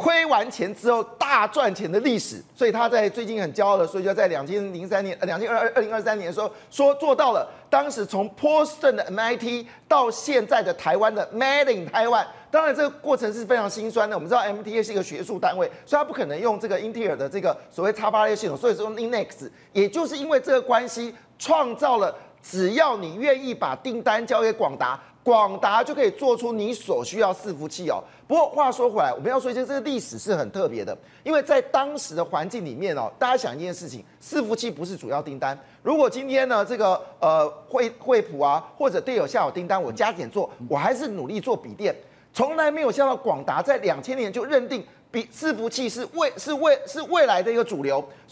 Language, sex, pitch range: Chinese, male, 210-290 Hz